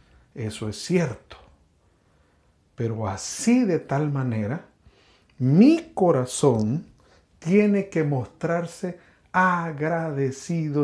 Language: Spanish